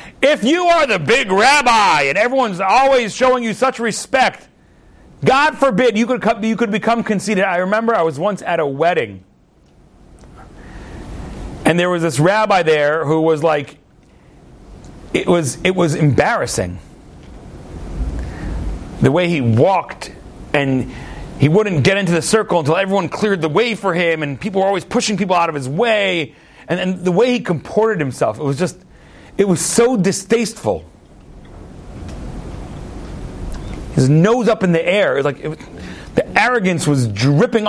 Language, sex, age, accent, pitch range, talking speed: English, male, 40-59, American, 160-240 Hz, 160 wpm